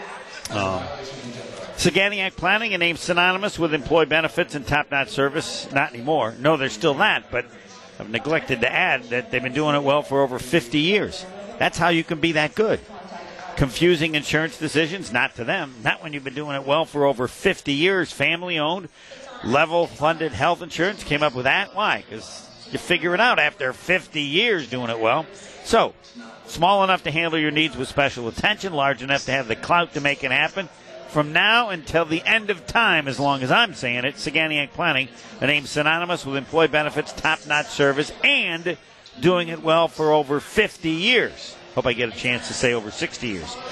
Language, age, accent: English, 50-69, American